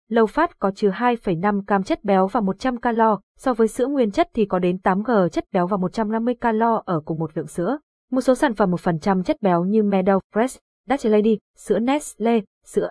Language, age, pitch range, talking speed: Vietnamese, 20-39, 190-240 Hz, 205 wpm